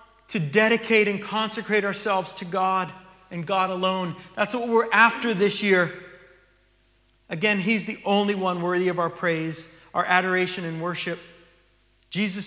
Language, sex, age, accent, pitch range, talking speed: English, male, 40-59, American, 195-245 Hz, 145 wpm